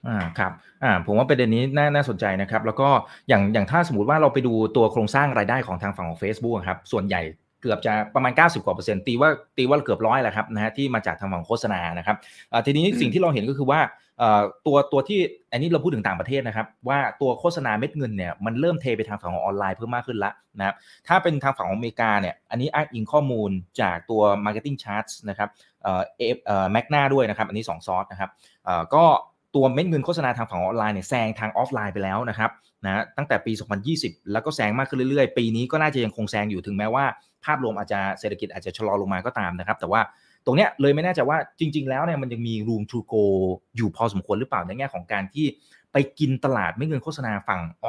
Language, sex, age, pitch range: Thai, male, 20-39, 105-145 Hz